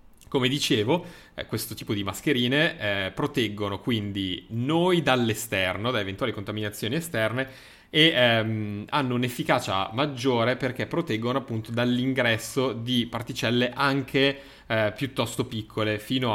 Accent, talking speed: native, 115 wpm